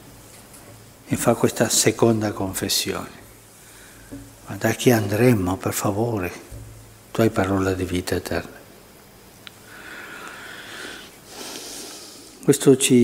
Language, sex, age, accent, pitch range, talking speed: Italian, male, 60-79, native, 110-125 Hz, 85 wpm